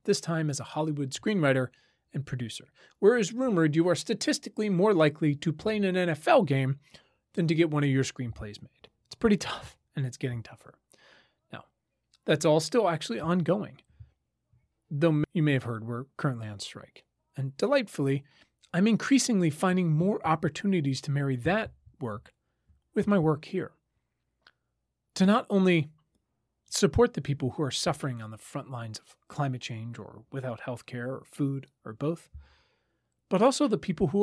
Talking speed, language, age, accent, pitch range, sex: 165 wpm, English, 30-49, American, 130-185 Hz, male